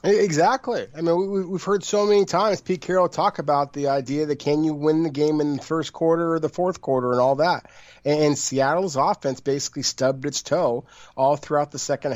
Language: English